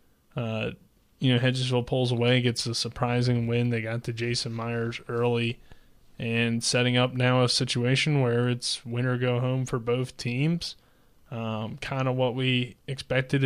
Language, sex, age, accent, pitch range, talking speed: English, male, 20-39, American, 115-130 Hz, 160 wpm